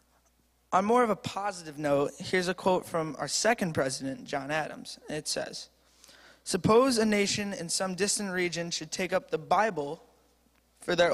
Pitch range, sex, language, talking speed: 160-195 Hz, male, English, 165 wpm